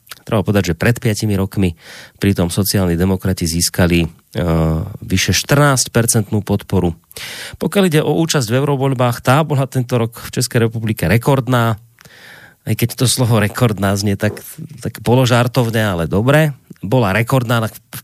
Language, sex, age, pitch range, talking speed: Slovak, male, 30-49, 95-125 Hz, 140 wpm